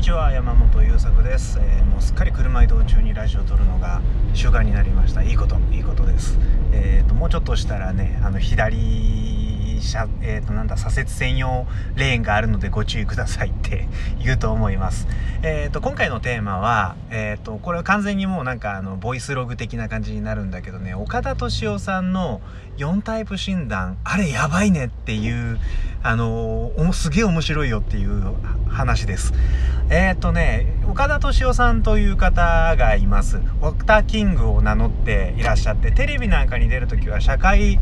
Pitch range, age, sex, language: 100-115 Hz, 30-49, male, Japanese